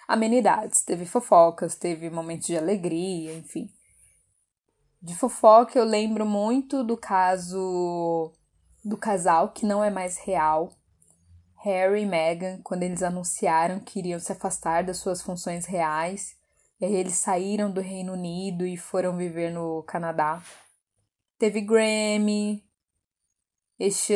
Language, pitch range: Portuguese, 175-220 Hz